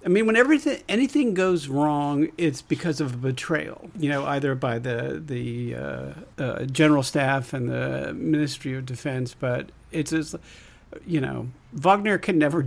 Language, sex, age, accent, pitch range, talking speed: English, male, 60-79, American, 130-165 Hz, 165 wpm